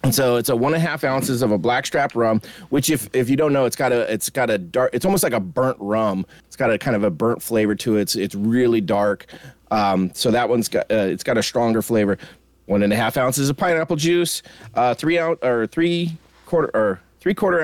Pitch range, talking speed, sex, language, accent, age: 125-165 Hz, 250 wpm, male, English, American, 30-49